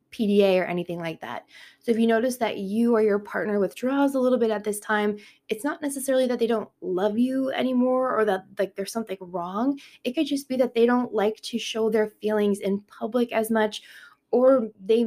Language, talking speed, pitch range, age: English, 215 wpm, 195-230 Hz, 20-39